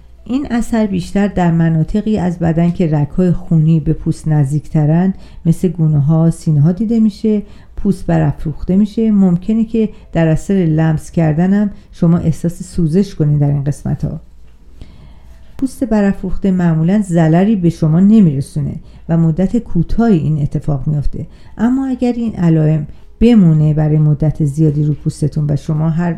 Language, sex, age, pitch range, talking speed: Persian, female, 50-69, 155-195 Hz, 145 wpm